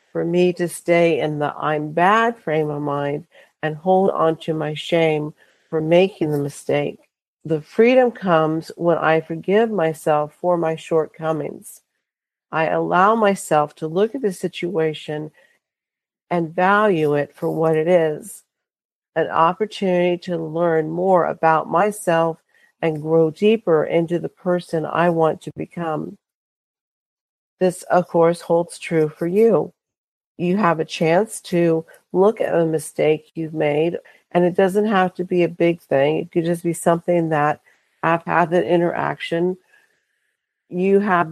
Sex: female